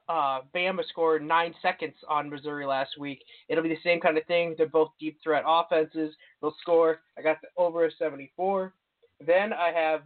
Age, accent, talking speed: 20-39, American, 185 wpm